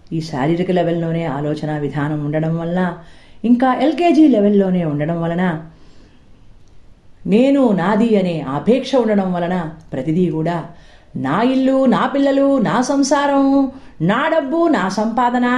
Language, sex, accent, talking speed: Telugu, female, native, 115 wpm